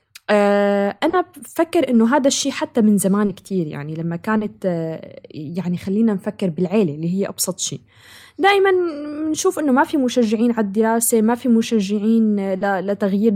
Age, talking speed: 20-39, 145 wpm